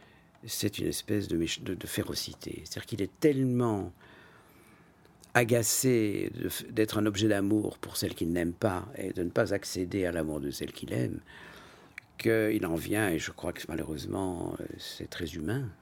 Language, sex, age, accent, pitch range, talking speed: French, male, 50-69, French, 90-115 Hz, 165 wpm